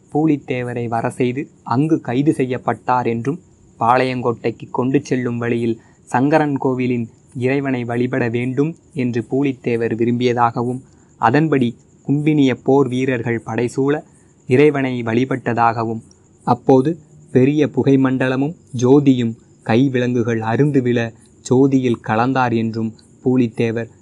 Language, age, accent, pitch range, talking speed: Tamil, 20-39, native, 115-130 Hz, 95 wpm